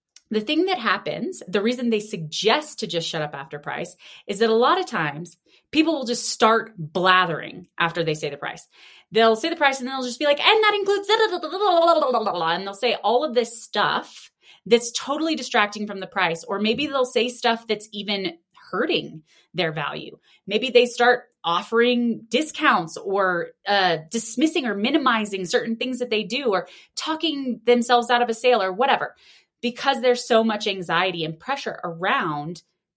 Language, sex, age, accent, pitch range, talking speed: English, female, 20-39, American, 175-250 Hz, 185 wpm